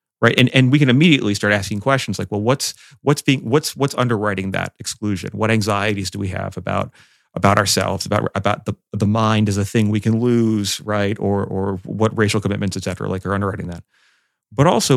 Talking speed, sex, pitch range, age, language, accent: 210 wpm, male, 105-135 Hz, 30-49, English, American